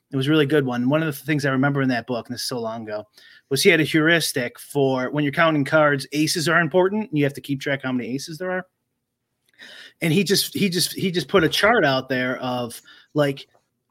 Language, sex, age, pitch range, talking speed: English, male, 30-49, 130-160 Hz, 265 wpm